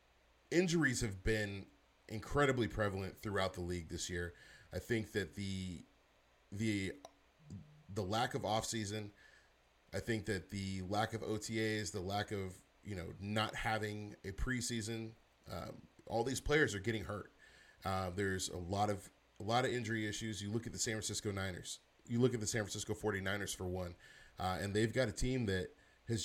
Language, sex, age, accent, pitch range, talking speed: English, male, 30-49, American, 95-115 Hz, 175 wpm